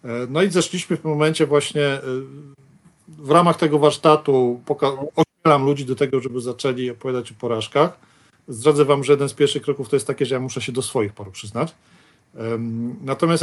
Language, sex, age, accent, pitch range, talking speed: Polish, male, 40-59, native, 125-155 Hz, 180 wpm